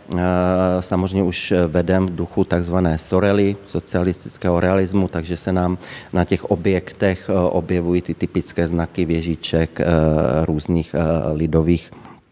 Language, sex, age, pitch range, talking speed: Slovak, male, 40-59, 85-100 Hz, 105 wpm